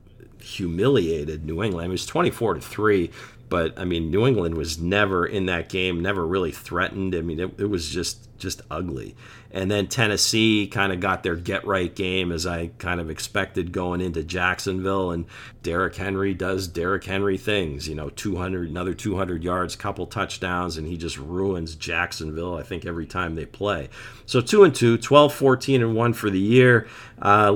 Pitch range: 90-115 Hz